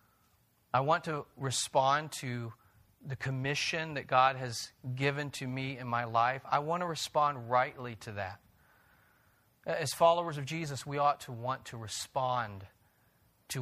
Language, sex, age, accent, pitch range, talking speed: English, male, 40-59, American, 120-145 Hz, 150 wpm